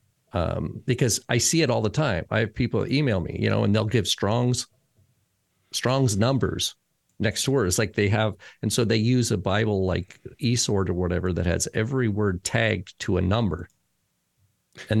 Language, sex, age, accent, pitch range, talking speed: English, male, 50-69, American, 100-125 Hz, 190 wpm